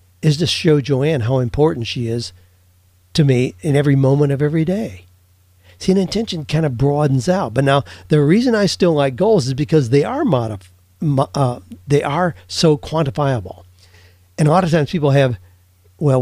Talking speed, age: 180 wpm, 50-69